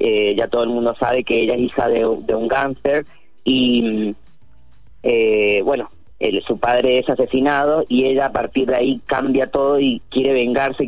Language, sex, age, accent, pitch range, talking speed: Spanish, female, 20-39, Argentinian, 115-145 Hz, 180 wpm